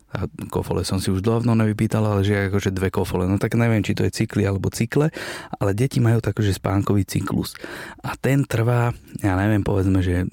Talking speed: 200 wpm